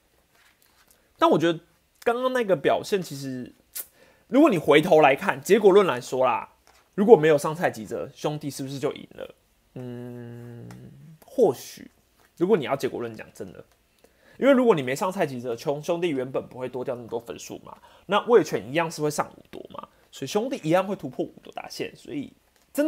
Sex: male